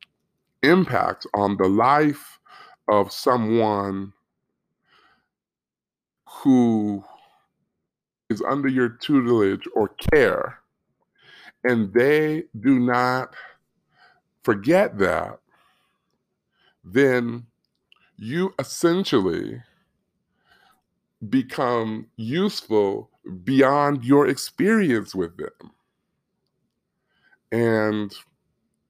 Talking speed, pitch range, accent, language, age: 60 wpm, 105-135 Hz, American, English, 50-69